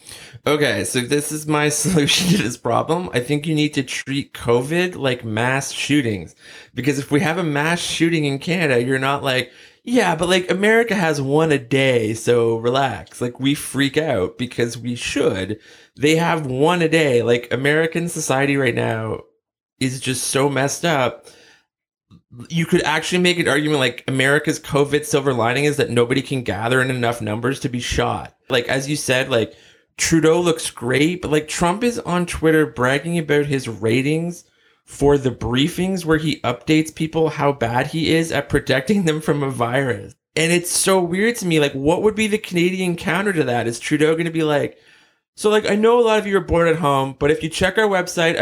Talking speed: 195 wpm